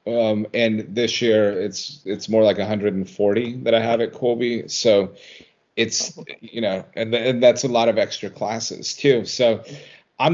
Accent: American